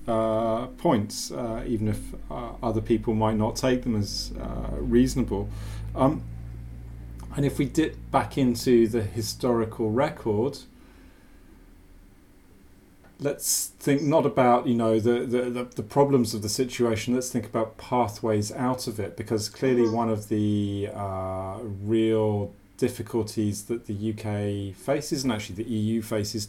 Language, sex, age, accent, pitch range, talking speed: English, male, 40-59, British, 105-125 Hz, 140 wpm